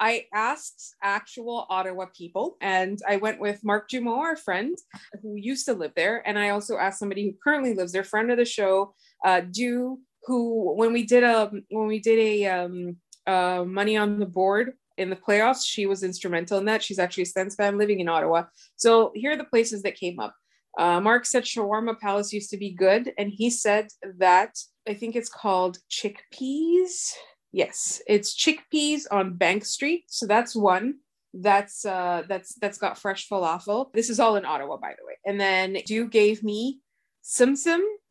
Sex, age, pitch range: female, 20-39, 195-240 Hz